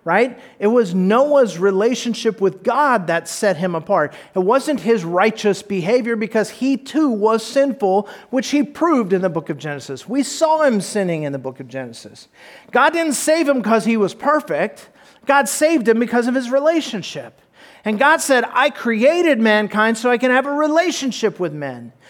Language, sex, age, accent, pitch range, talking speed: English, male, 40-59, American, 200-275 Hz, 180 wpm